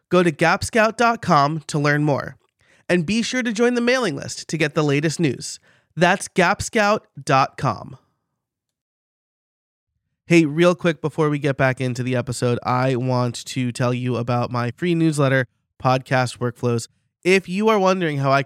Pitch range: 130-175 Hz